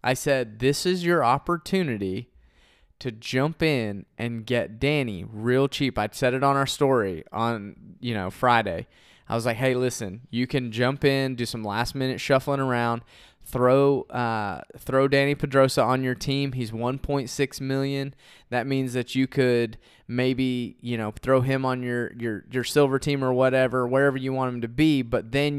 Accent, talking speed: American, 180 wpm